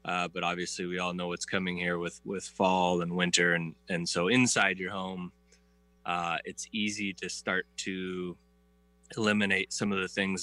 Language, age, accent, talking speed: English, 20-39, American, 180 wpm